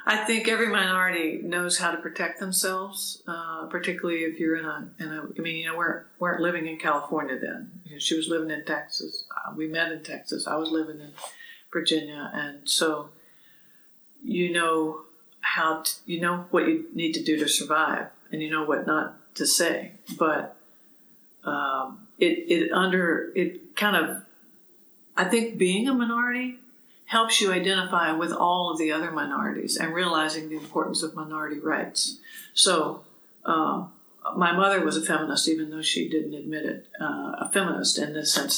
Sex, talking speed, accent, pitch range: female, 170 wpm, American, 155-190 Hz